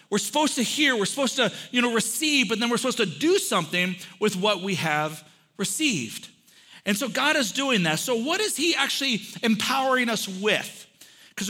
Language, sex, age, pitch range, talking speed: English, male, 40-59, 195-270 Hz, 195 wpm